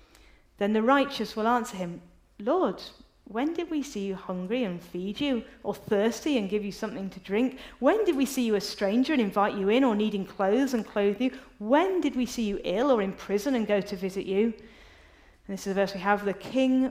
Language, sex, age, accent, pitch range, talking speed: English, female, 40-59, British, 175-220 Hz, 225 wpm